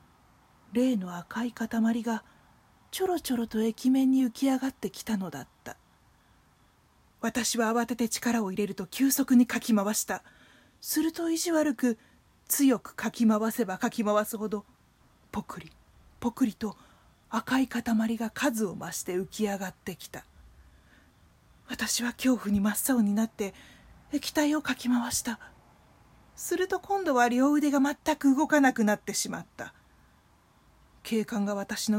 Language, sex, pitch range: Japanese, female, 210-275 Hz